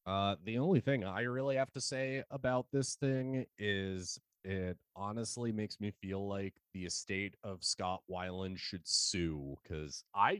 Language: English